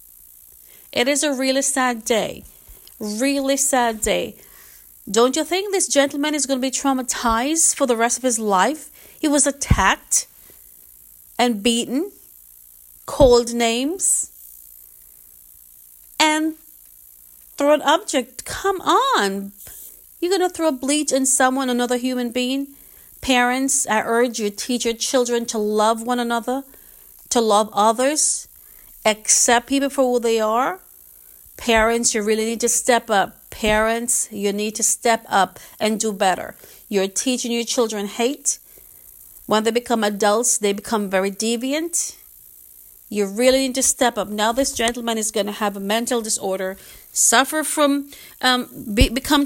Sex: female